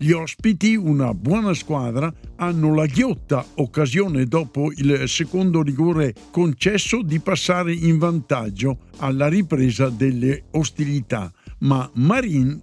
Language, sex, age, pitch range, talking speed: Italian, male, 60-79, 135-190 Hz, 115 wpm